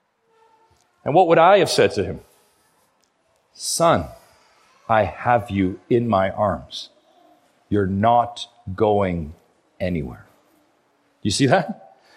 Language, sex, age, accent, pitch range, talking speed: English, male, 40-59, American, 190-295 Hz, 115 wpm